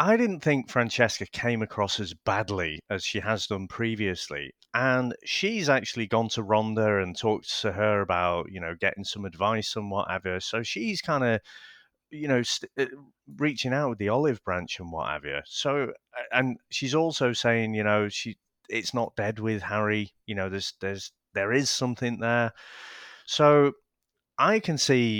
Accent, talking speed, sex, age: British, 175 wpm, male, 30-49